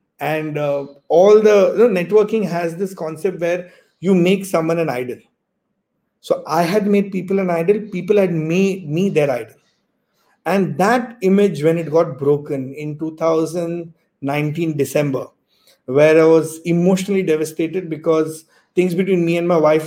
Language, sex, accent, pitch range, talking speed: English, male, Indian, 160-190 Hz, 150 wpm